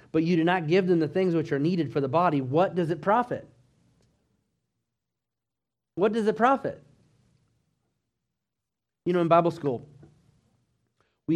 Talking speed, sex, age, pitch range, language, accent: 150 wpm, male, 30-49, 130-165 Hz, English, American